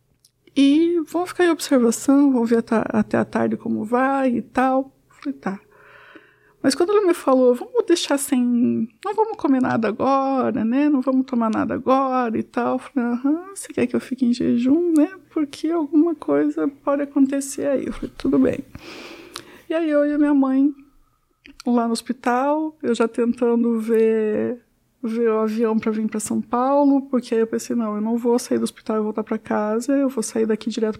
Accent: Brazilian